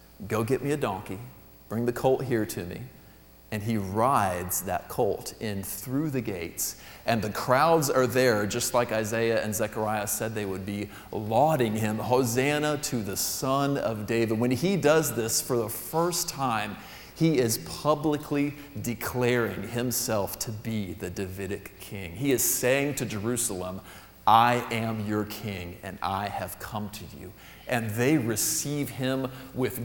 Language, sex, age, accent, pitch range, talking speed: English, male, 40-59, American, 105-145 Hz, 160 wpm